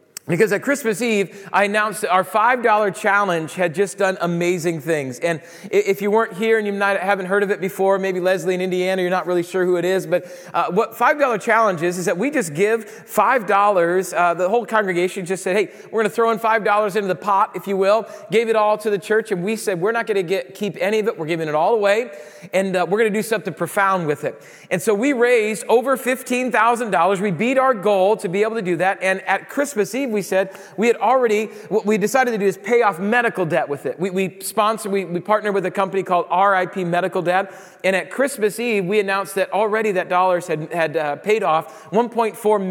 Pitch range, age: 180-220 Hz, 40-59